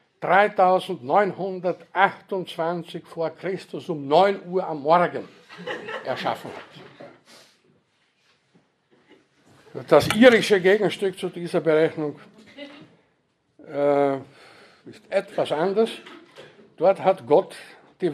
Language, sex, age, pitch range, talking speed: German, male, 60-79, 155-190 Hz, 80 wpm